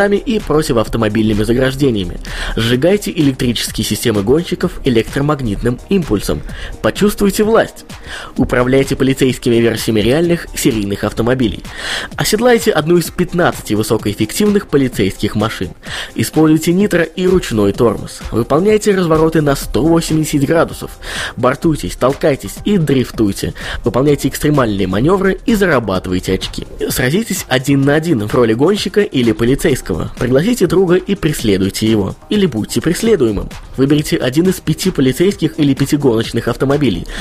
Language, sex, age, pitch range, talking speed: Russian, male, 20-39, 115-175 Hz, 115 wpm